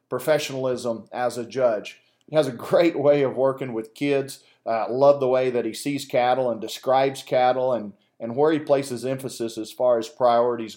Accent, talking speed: American, 190 wpm